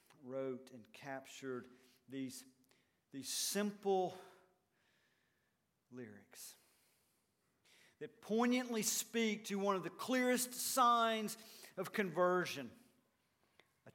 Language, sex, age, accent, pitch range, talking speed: English, male, 50-69, American, 130-205 Hz, 80 wpm